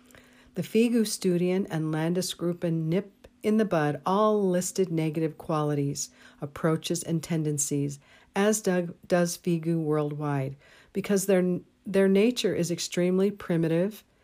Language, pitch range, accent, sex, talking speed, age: English, 155-195 Hz, American, female, 120 wpm, 50-69